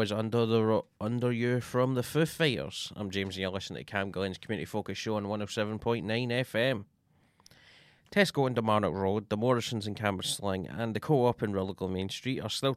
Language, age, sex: English, 20-39, male